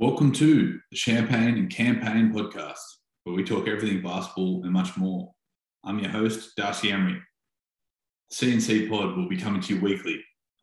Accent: Australian